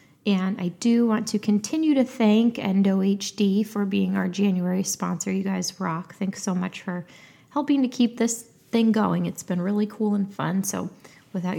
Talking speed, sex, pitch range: 180 wpm, female, 185-215 Hz